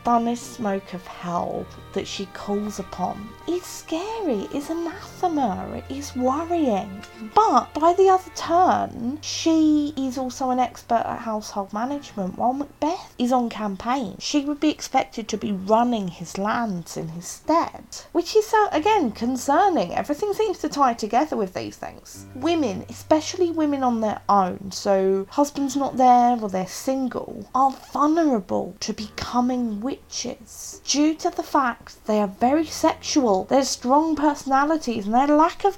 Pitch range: 210-295 Hz